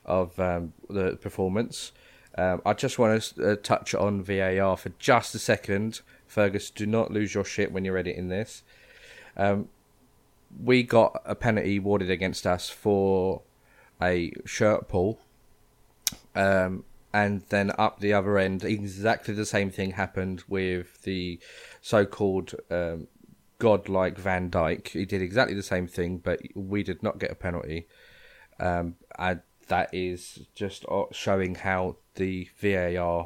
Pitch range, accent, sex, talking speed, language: 90-100 Hz, British, male, 145 wpm, English